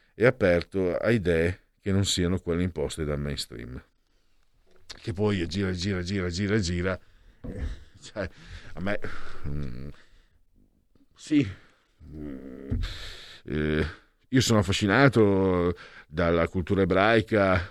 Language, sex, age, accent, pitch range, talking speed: Italian, male, 50-69, native, 85-110 Hz, 100 wpm